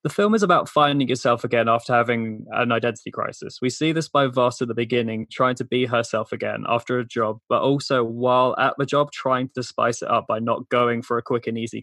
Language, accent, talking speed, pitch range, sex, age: English, British, 240 wpm, 115-135 Hz, male, 20-39